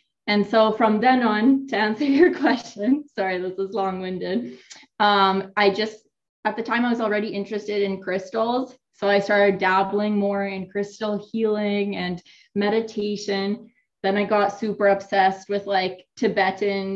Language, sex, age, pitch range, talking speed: English, female, 20-39, 195-220 Hz, 150 wpm